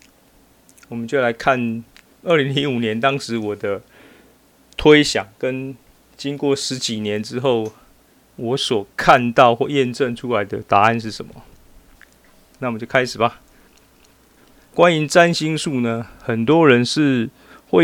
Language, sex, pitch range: Chinese, male, 115-145 Hz